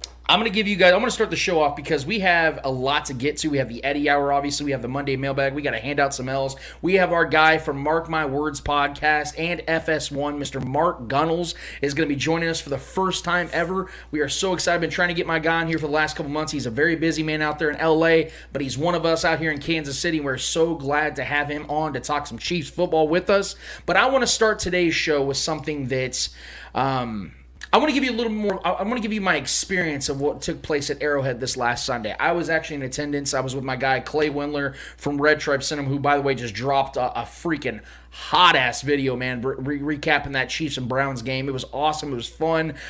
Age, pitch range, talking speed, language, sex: 20-39, 135-160 Hz, 265 wpm, English, male